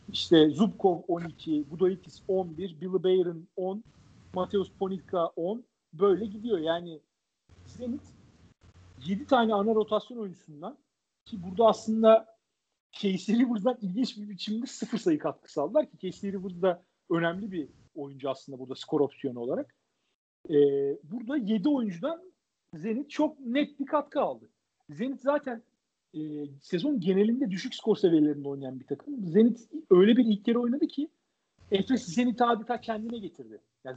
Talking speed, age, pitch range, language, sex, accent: 135 wpm, 50-69, 155-225 Hz, Turkish, male, native